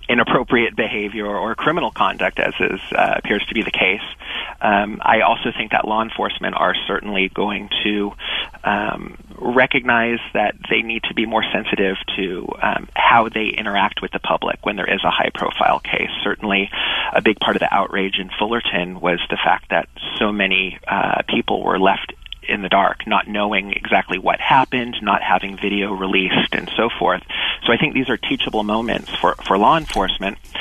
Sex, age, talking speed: male, 30-49, 180 wpm